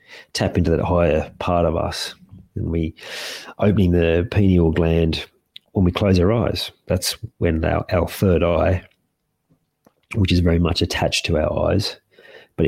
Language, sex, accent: English, male, Australian